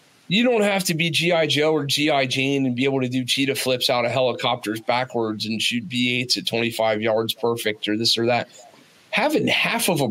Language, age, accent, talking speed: English, 40-59, American, 215 wpm